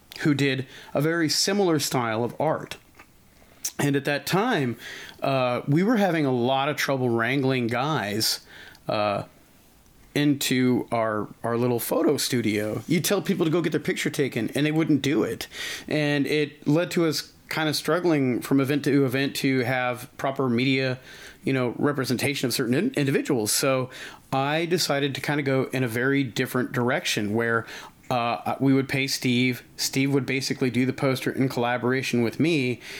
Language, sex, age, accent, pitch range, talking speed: English, male, 30-49, American, 125-150 Hz, 170 wpm